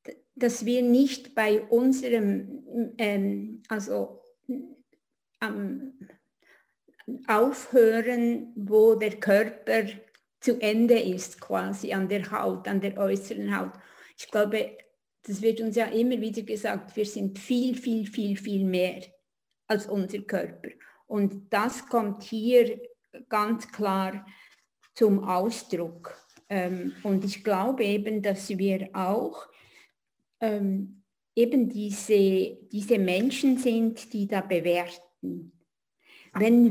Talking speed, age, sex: 110 wpm, 50-69, female